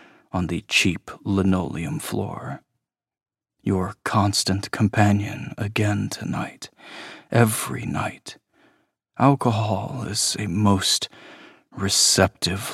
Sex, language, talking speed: male, English, 75 wpm